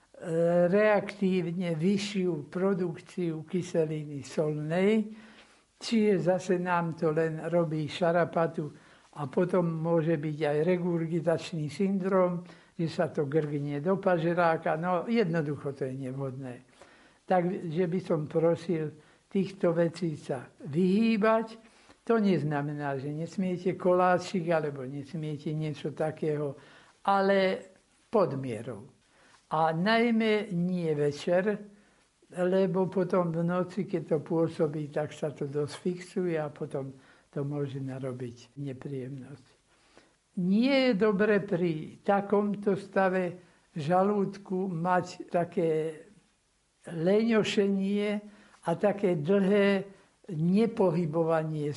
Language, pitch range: Slovak, 155-195 Hz